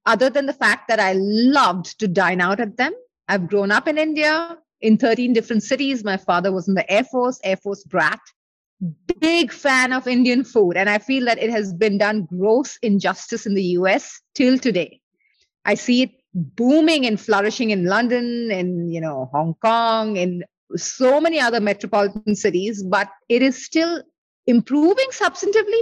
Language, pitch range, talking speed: English, 200-265 Hz, 180 wpm